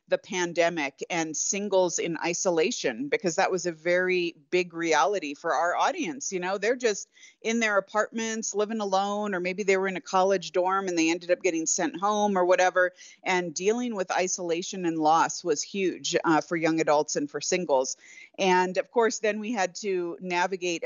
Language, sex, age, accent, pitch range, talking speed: English, female, 40-59, American, 170-200 Hz, 185 wpm